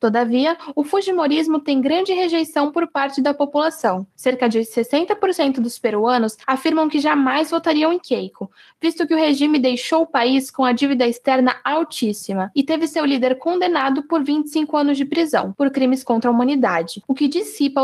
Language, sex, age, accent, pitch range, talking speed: Portuguese, female, 10-29, Brazilian, 245-315 Hz, 170 wpm